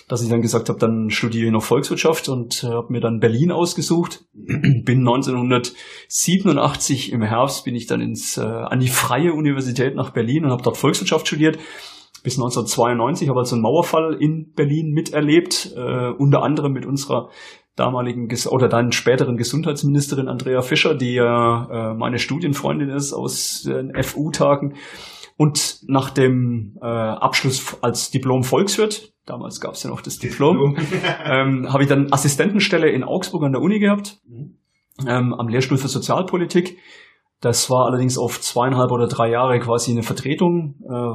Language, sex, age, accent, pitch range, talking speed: German, male, 30-49, German, 120-150 Hz, 160 wpm